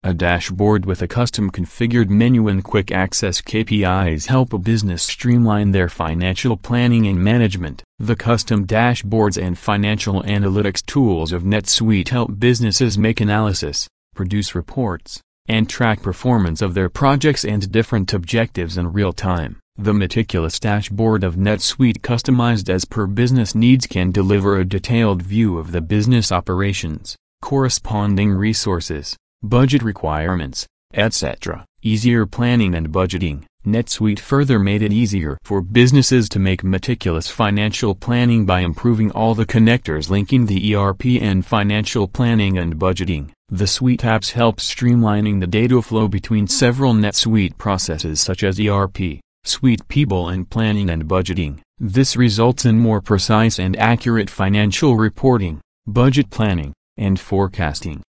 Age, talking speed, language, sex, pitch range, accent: 30-49, 140 wpm, English, male, 95-115 Hz, American